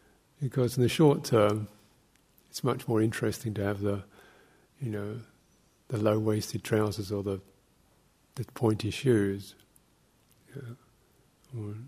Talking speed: 115 wpm